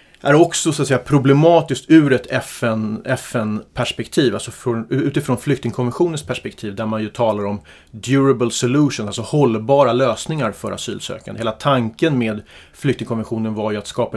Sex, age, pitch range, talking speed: male, 30-49, 110-150 Hz, 125 wpm